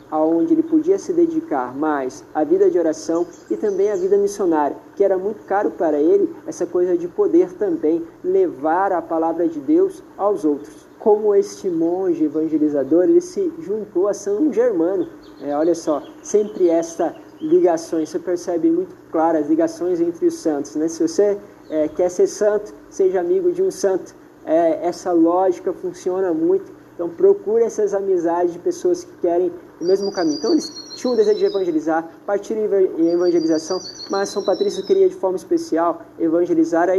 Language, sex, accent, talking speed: Portuguese, male, Brazilian, 170 wpm